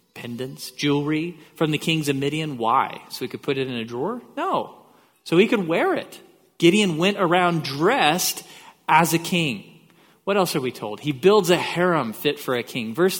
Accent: American